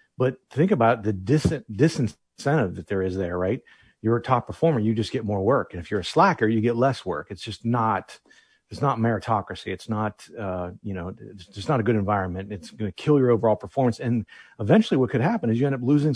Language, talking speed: English, 235 wpm